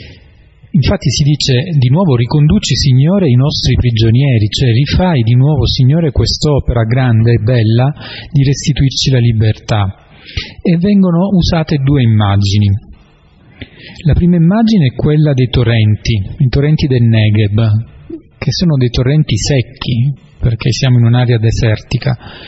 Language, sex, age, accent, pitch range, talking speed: Italian, male, 40-59, native, 115-150 Hz, 130 wpm